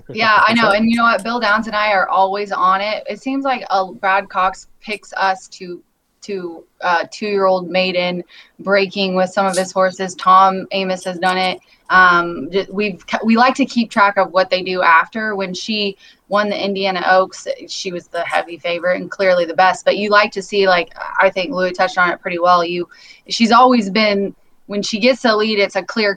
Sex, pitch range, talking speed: female, 180-210 Hz, 210 wpm